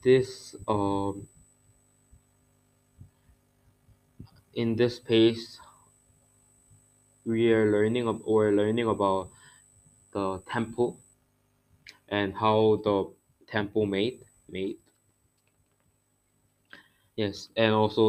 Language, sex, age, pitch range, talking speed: English, male, 20-39, 105-120 Hz, 75 wpm